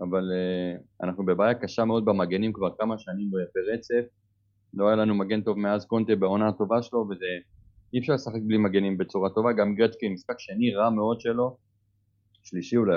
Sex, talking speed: male, 170 wpm